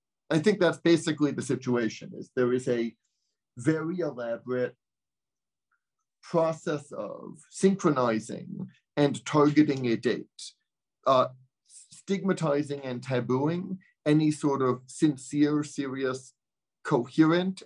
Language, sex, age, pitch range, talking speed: English, male, 40-59, 130-175 Hz, 100 wpm